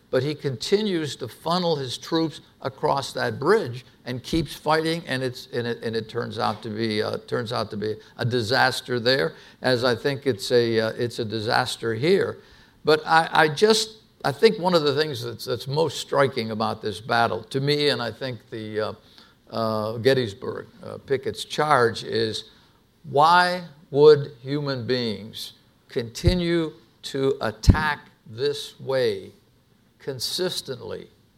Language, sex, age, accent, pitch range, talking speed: English, male, 60-79, American, 120-160 Hz, 155 wpm